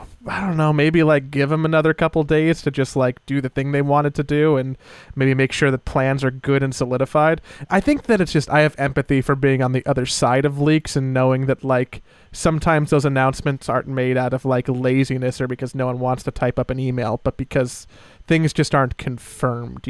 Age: 30-49